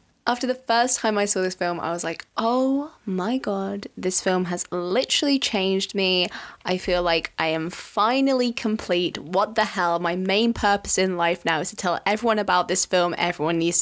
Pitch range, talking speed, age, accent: 180-230 Hz, 195 wpm, 20-39, British